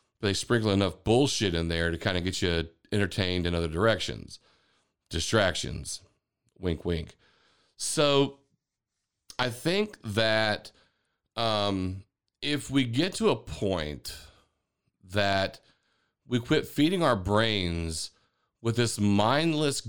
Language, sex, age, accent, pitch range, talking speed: English, male, 40-59, American, 95-155 Hz, 115 wpm